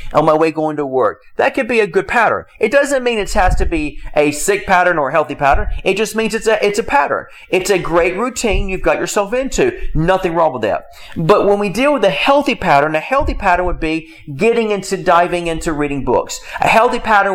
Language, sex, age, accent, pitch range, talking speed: English, male, 40-59, American, 160-225 Hz, 230 wpm